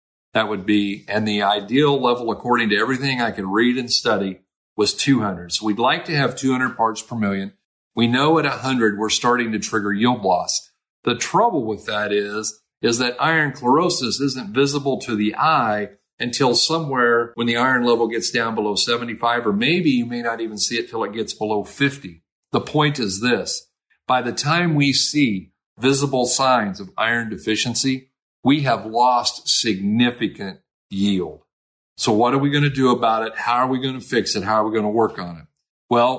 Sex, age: male, 50-69